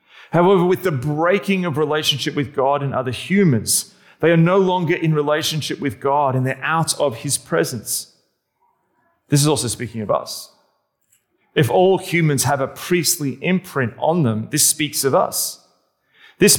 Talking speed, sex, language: 165 wpm, male, English